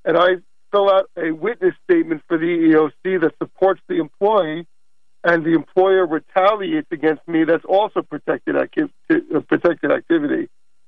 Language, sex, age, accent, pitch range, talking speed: English, male, 50-69, American, 170-215 Hz, 145 wpm